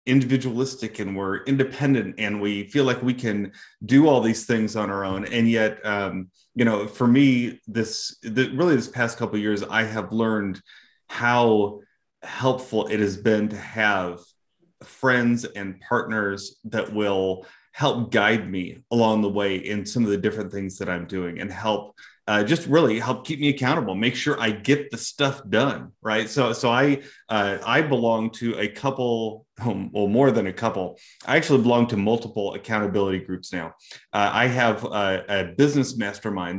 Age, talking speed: 30-49, 175 wpm